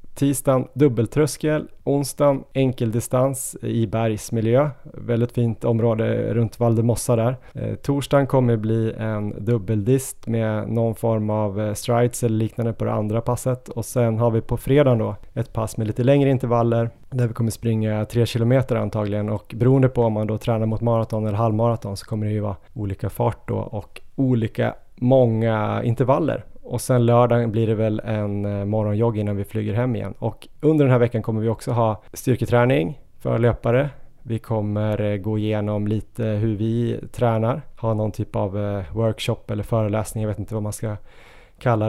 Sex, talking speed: male, 170 wpm